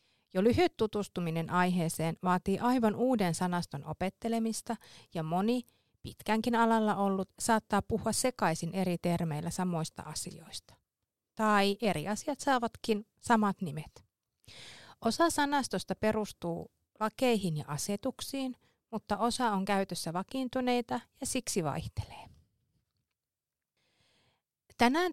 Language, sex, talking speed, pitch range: Finnish, female, 100 wpm, 175-230 Hz